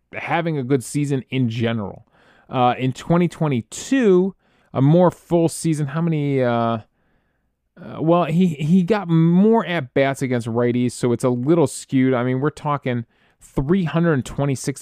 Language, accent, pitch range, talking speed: English, American, 120-165 Hz, 140 wpm